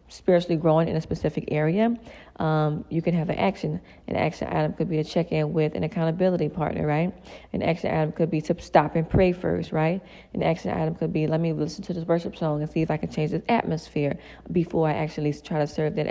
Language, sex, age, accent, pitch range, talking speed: English, female, 20-39, American, 150-175 Hz, 230 wpm